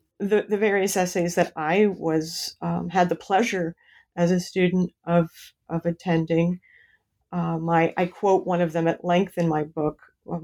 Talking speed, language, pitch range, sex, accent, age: 170 wpm, English, 170-205 Hz, female, American, 40-59